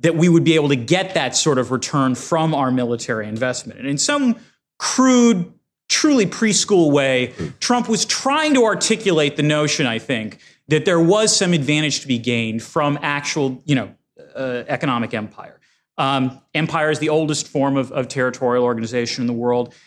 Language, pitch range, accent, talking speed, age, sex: English, 135-180 Hz, American, 180 wpm, 30-49, male